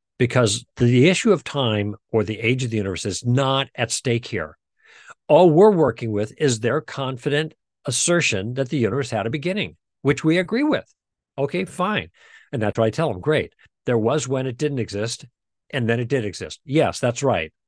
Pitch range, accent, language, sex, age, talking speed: 115-150 Hz, American, English, male, 50-69, 195 wpm